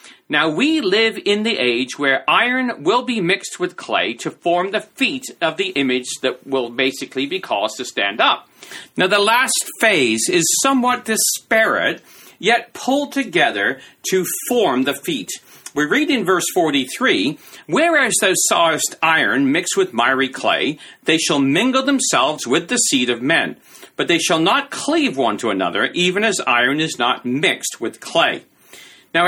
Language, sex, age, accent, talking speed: English, male, 40-59, American, 165 wpm